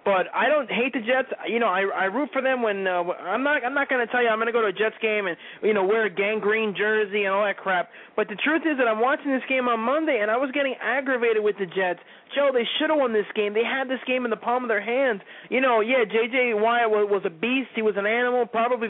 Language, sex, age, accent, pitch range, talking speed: English, male, 20-39, American, 210-260 Hz, 290 wpm